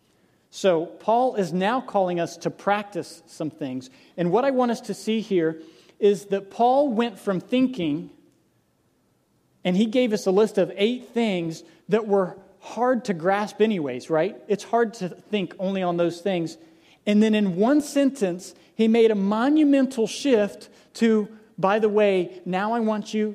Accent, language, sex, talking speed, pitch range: American, English, male, 170 wpm, 170-220 Hz